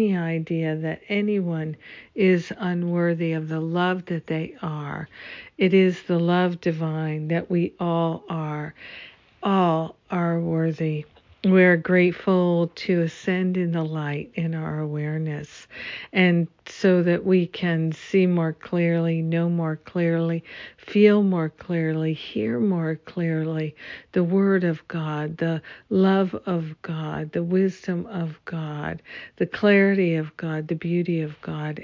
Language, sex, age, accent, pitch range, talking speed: English, female, 60-79, American, 160-185 Hz, 130 wpm